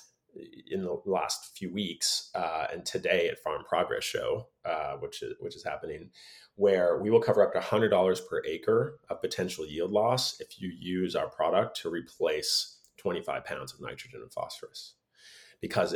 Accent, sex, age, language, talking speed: American, male, 30-49, English, 175 wpm